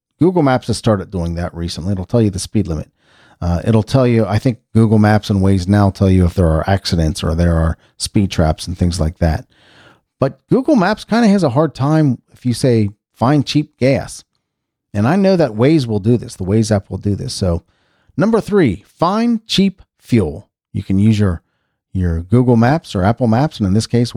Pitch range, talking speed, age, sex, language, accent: 95-140 Hz, 220 wpm, 40-59, male, English, American